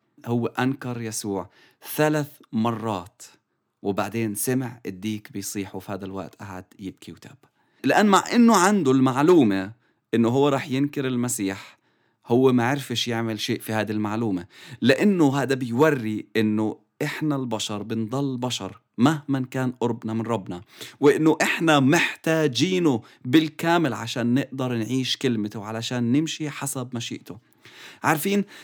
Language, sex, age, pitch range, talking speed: English, male, 30-49, 115-155 Hz, 125 wpm